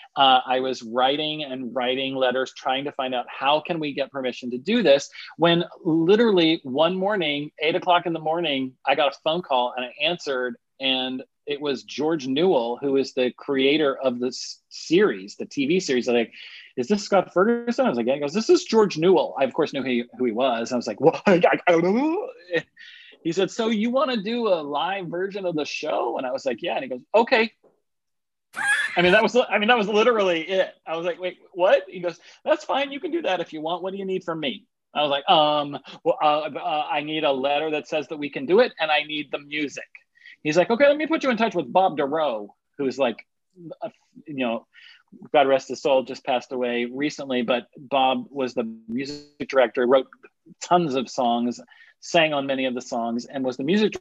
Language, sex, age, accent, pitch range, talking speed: English, male, 30-49, American, 130-190 Hz, 225 wpm